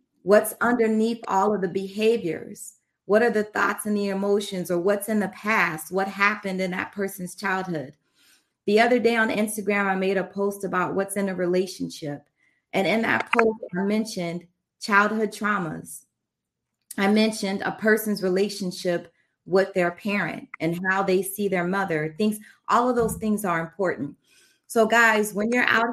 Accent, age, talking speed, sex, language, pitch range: American, 30-49, 165 wpm, female, English, 185-215 Hz